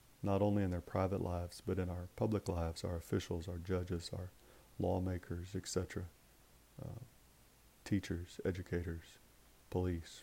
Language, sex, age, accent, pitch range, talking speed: English, male, 40-59, American, 90-100 Hz, 130 wpm